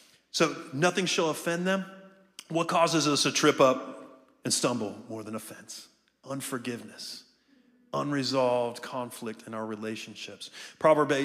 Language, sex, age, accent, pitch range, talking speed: English, male, 30-49, American, 125-175 Hz, 125 wpm